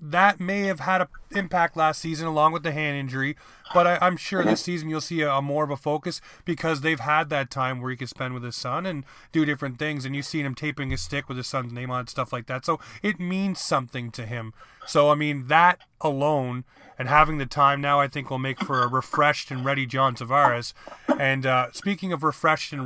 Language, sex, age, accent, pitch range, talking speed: English, male, 30-49, American, 130-155 Hz, 240 wpm